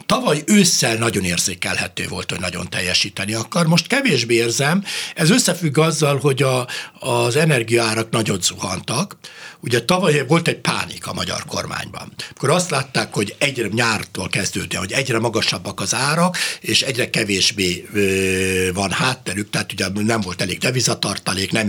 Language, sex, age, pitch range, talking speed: Hungarian, male, 60-79, 105-155 Hz, 145 wpm